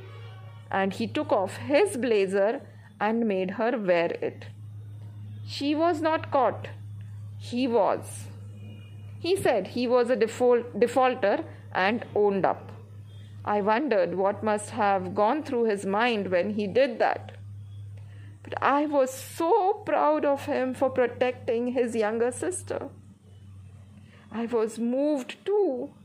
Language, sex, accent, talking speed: Marathi, female, native, 130 wpm